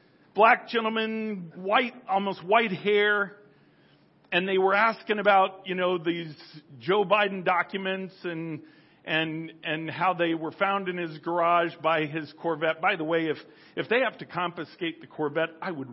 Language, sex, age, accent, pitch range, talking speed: English, male, 50-69, American, 165-210 Hz, 160 wpm